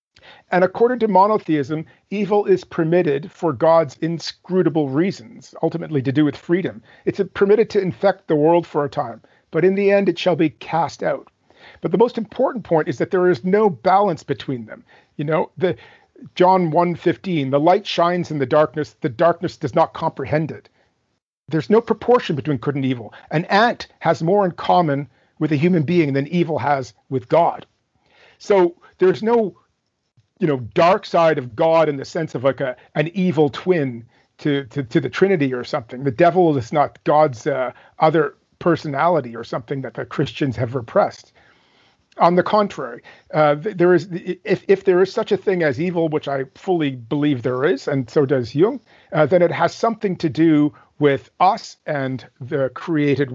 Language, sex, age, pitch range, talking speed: English, male, 40-59, 145-185 Hz, 185 wpm